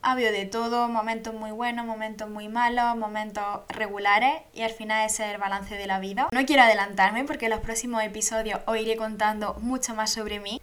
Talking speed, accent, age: 205 wpm, Spanish, 10-29